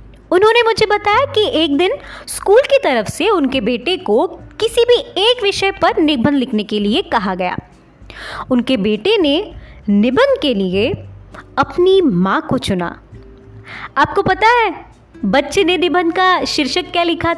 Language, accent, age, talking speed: Hindi, native, 20-39, 150 wpm